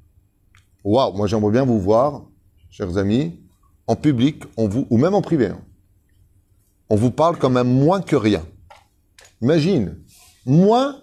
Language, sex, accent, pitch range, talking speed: French, male, French, 95-120 Hz, 140 wpm